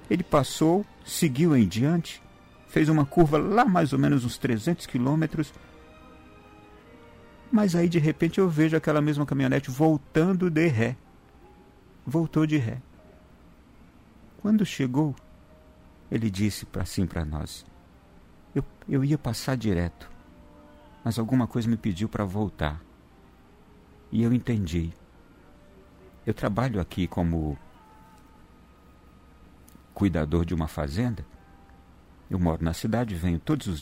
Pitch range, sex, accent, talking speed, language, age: 85-135 Hz, male, Brazilian, 120 wpm, Portuguese, 50-69